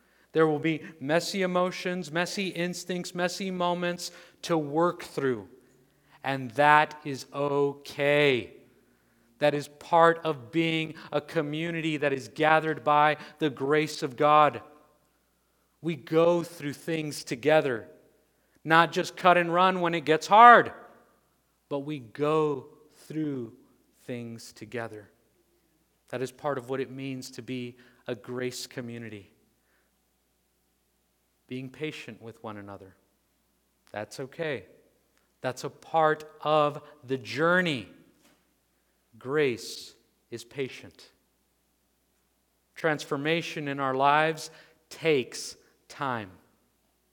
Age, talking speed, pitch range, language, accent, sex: 40-59, 110 wpm, 130-165 Hz, English, American, male